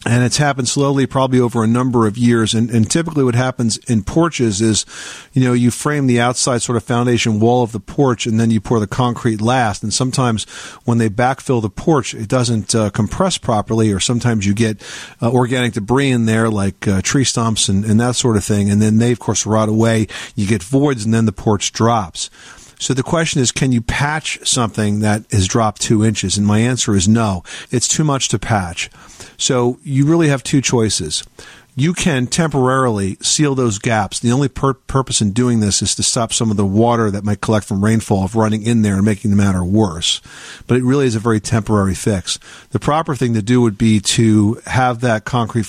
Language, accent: English, American